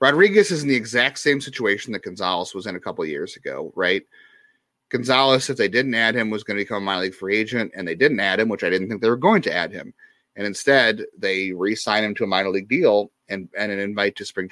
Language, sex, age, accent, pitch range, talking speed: English, male, 30-49, American, 105-135 Hz, 265 wpm